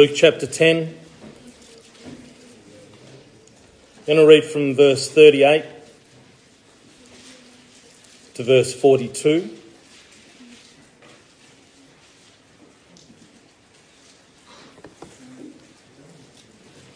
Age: 40-59